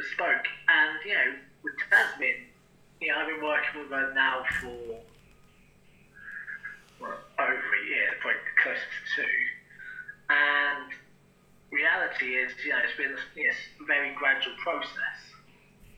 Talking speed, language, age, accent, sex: 130 wpm, English, 20-39, British, male